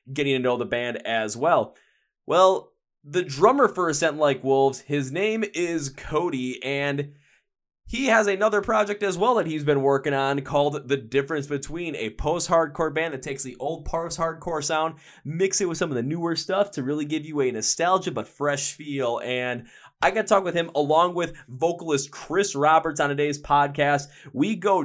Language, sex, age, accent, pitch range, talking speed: English, male, 20-39, American, 140-195 Hz, 185 wpm